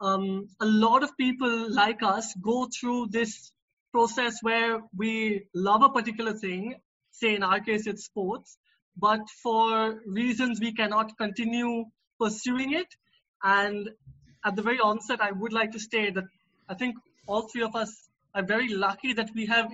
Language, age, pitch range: English, 20-39, 215-255 Hz